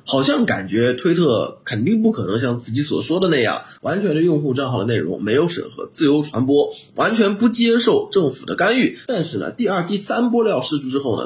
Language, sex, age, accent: Chinese, male, 30-49, native